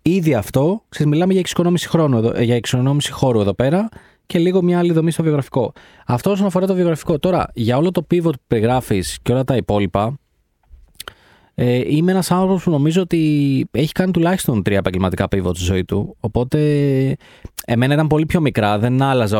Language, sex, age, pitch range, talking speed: Greek, male, 30-49, 110-155 Hz, 170 wpm